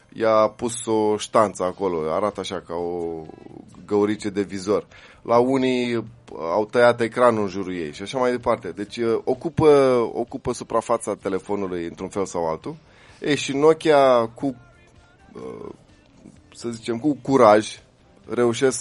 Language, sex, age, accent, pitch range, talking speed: Romanian, male, 20-39, native, 100-125 Hz, 135 wpm